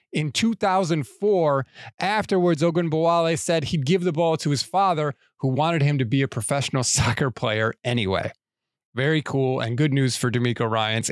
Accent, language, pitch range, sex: American, English, 130-170 Hz, male